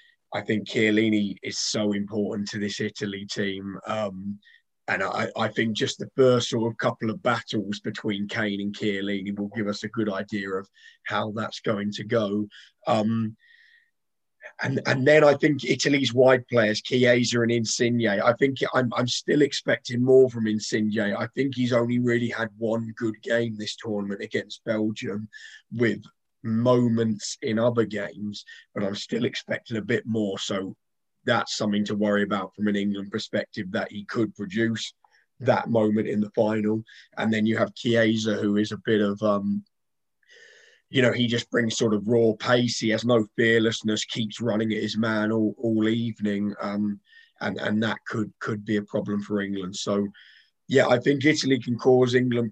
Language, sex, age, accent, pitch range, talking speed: English, male, 20-39, British, 105-120 Hz, 175 wpm